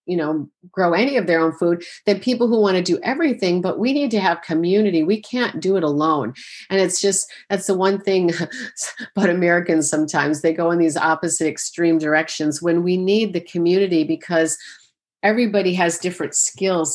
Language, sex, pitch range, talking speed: English, female, 155-180 Hz, 190 wpm